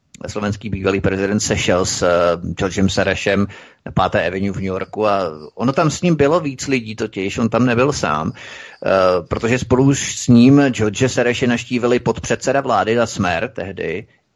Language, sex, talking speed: Czech, male, 160 wpm